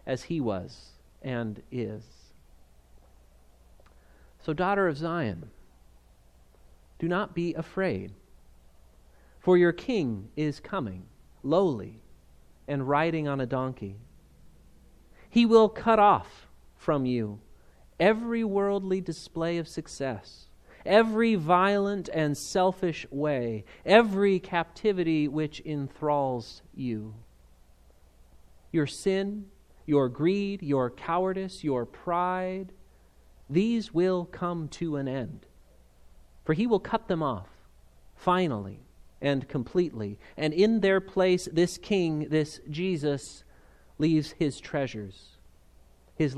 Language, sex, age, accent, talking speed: English, male, 40-59, American, 105 wpm